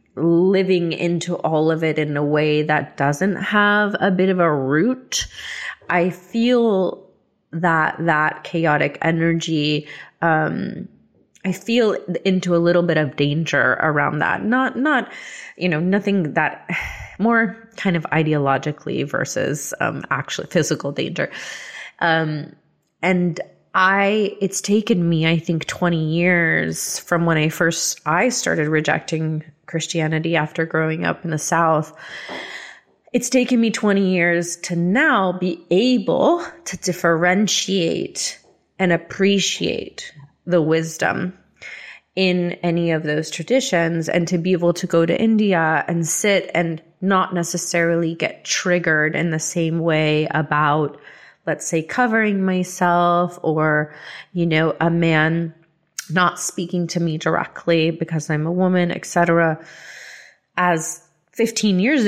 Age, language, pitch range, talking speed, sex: 20-39, English, 160-185 Hz, 130 wpm, female